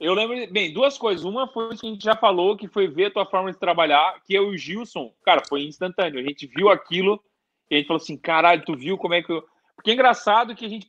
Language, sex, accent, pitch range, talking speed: Portuguese, male, Brazilian, 165-230 Hz, 270 wpm